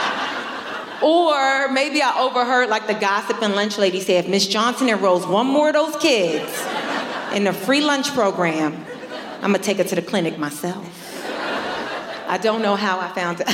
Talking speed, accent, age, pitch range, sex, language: 175 wpm, American, 30-49, 175-240 Hz, female, English